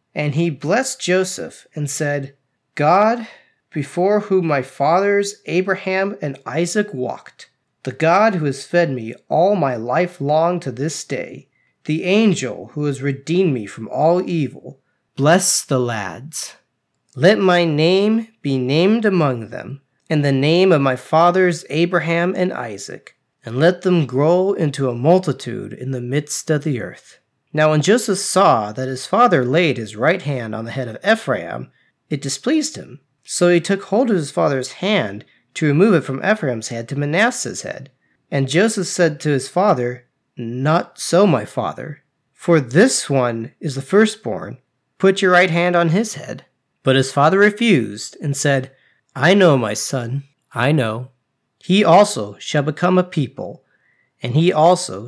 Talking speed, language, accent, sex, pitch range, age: 160 wpm, English, American, male, 135-180 Hz, 30-49